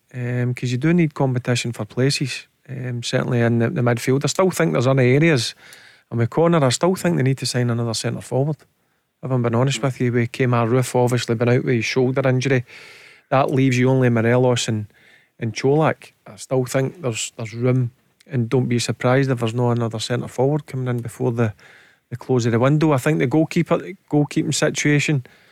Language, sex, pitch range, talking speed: English, male, 120-135 Hz, 205 wpm